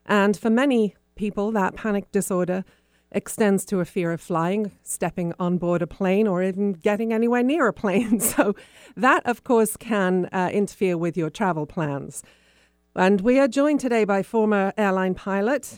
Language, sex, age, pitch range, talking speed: English, female, 40-59, 175-230 Hz, 170 wpm